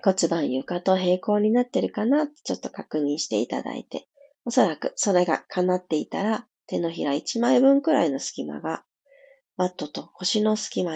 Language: Japanese